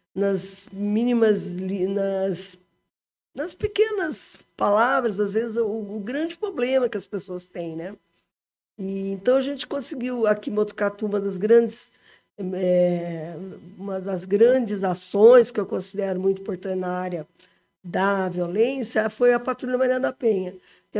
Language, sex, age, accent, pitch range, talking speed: Portuguese, female, 50-69, Brazilian, 195-235 Hz, 140 wpm